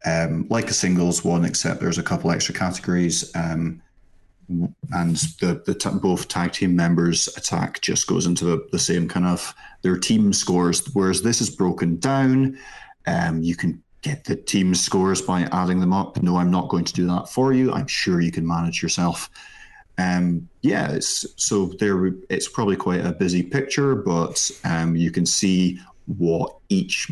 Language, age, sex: English, 30-49, male